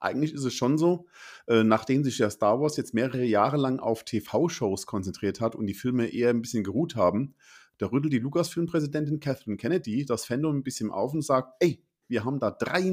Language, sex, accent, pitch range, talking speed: German, male, German, 110-155 Hz, 210 wpm